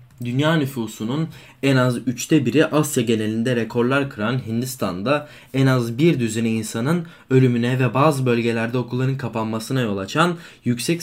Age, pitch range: 20-39, 120-160 Hz